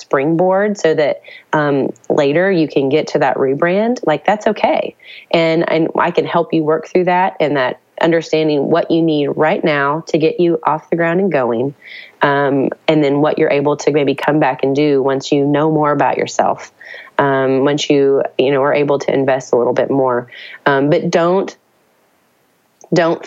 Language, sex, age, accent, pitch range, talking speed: English, female, 30-49, American, 135-160 Hz, 195 wpm